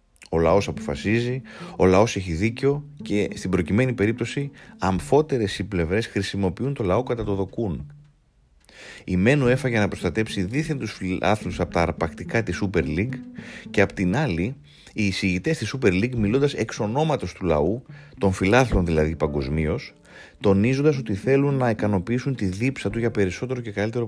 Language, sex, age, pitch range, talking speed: Greek, male, 30-49, 90-125 Hz, 155 wpm